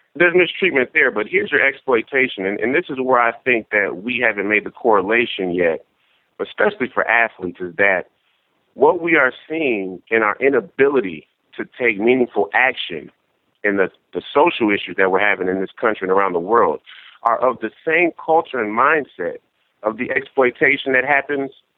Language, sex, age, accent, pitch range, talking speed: English, male, 40-59, American, 100-140 Hz, 175 wpm